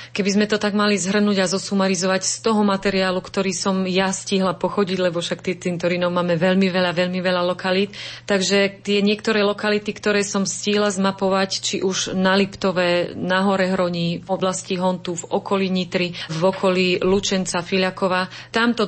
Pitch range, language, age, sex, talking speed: 175-200 Hz, Slovak, 30-49, female, 160 wpm